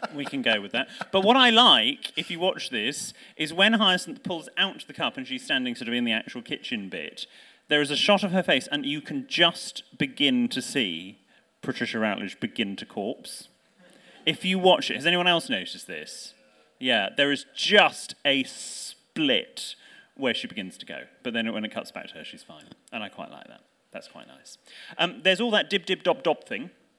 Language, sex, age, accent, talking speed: English, male, 30-49, British, 215 wpm